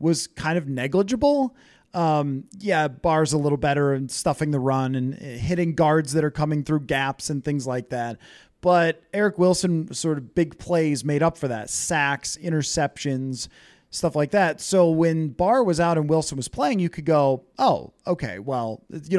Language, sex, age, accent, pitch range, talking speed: English, male, 30-49, American, 135-175 Hz, 180 wpm